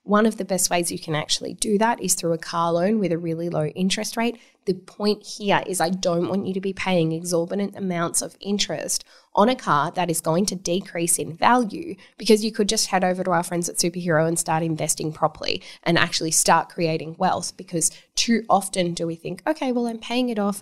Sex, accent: female, Australian